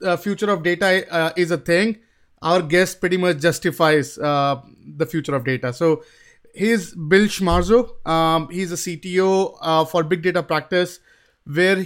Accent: Indian